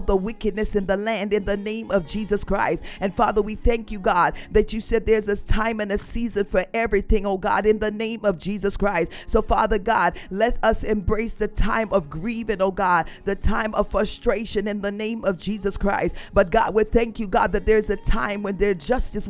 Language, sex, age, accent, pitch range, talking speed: English, female, 40-59, American, 200-220 Hz, 220 wpm